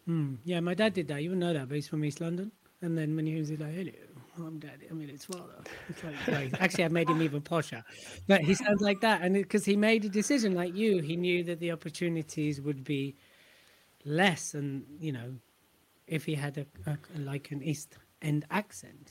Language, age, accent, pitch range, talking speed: English, 30-49, British, 145-180 Hz, 225 wpm